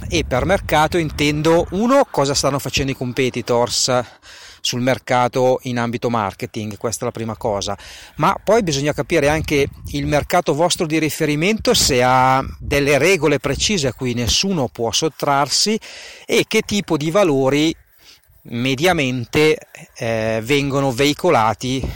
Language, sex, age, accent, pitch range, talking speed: Italian, male, 40-59, native, 115-150 Hz, 135 wpm